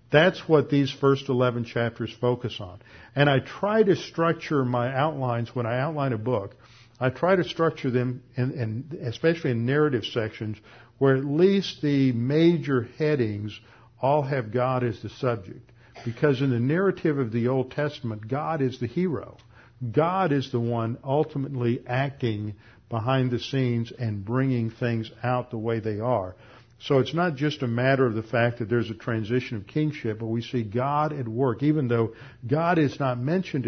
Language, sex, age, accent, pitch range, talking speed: English, male, 50-69, American, 115-140 Hz, 180 wpm